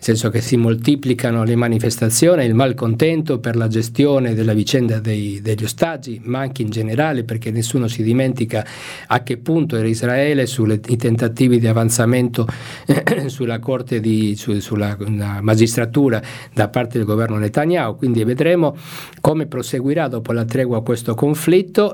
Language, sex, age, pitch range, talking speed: Italian, male, 50-69, 115-140 Hz, 150 wpm